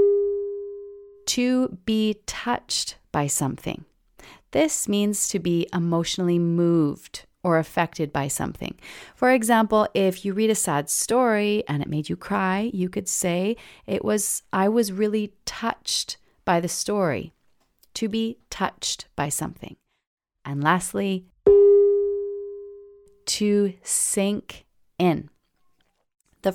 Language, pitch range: English, 165-225 Hz